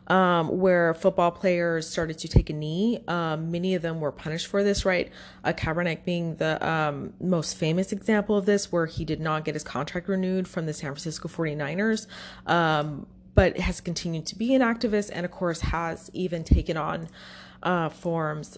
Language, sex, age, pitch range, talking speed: English, female, 20-39, 160-200 Hz, 185 wpm